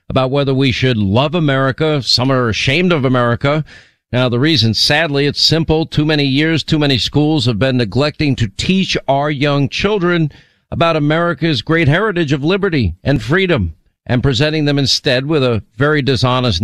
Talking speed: 170 wpm